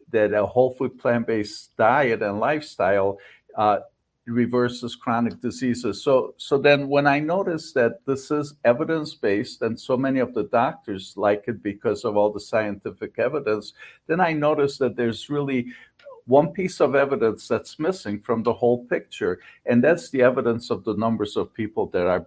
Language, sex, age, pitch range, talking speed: English, male, 50-69, 110-135 Hz, 170 wpm